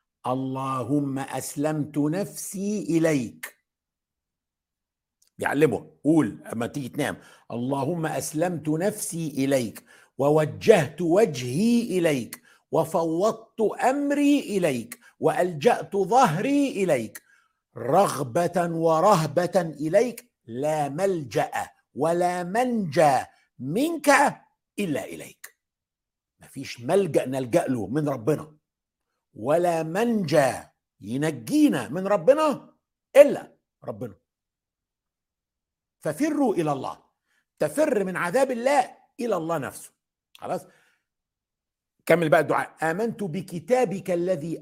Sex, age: male, 50-69